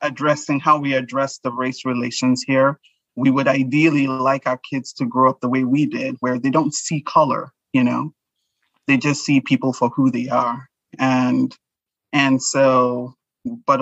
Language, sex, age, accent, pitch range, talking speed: English, male, 30-49, American, 125-135 Hz, 175 wpm